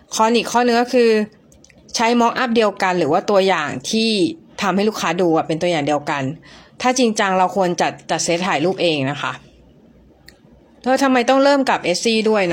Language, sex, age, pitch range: Thai, female, 30-49, 175-225 Hz